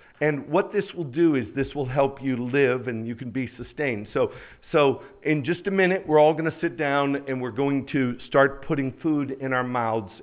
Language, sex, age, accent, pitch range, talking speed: English, male, 50-69, American, 125-175 Hz, 225 wpm